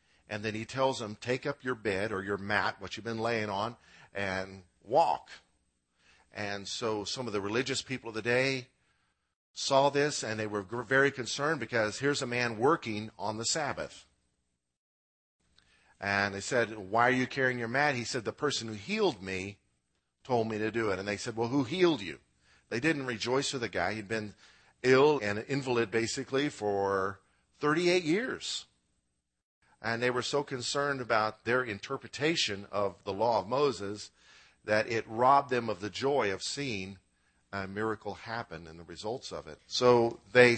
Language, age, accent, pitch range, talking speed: English, 50-69, American, 100-125 Hz, 175 wpm